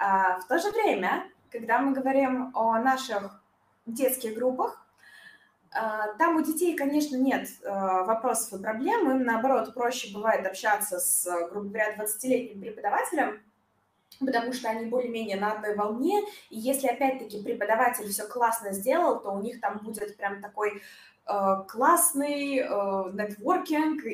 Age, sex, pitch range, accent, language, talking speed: 20-39, female, 210-275 Hz, native, Russian, 130 wpm